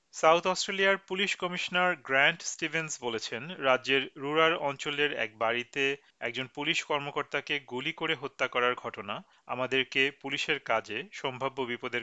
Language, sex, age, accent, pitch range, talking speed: Bengali, male, 40-59, native, 130-160 Hz, 65 wpm